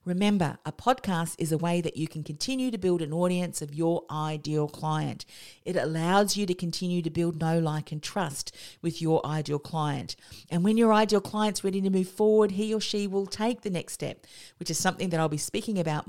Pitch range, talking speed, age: 155-195 Hz, 215 wpm, 50-69